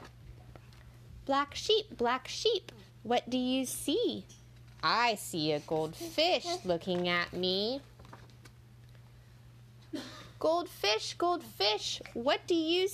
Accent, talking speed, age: American, 95 wpm, 20-39